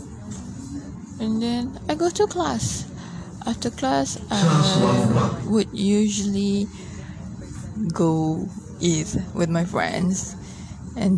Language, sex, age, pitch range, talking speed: English, female, 20-39, 170-200 Hz, 85 wpm